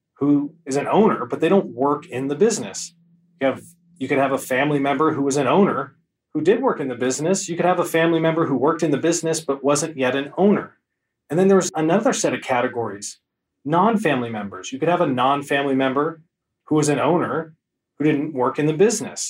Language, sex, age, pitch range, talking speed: English, male, 30-49, 135-175 Hz, 220 wpm